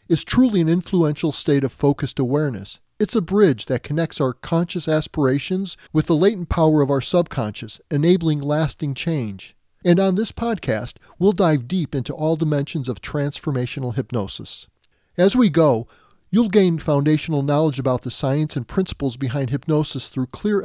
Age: 40-59